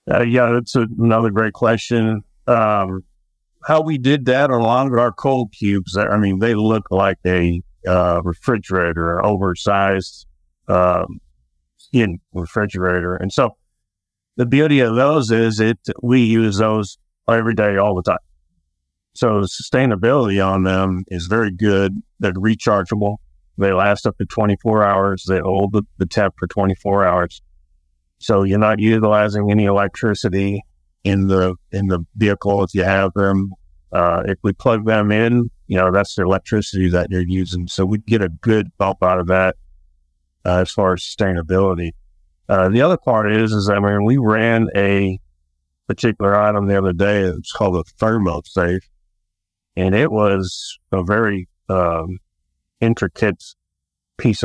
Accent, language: American, English